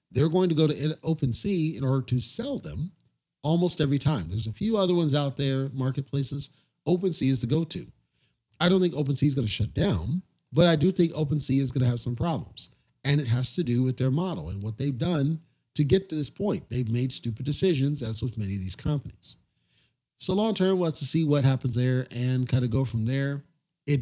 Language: English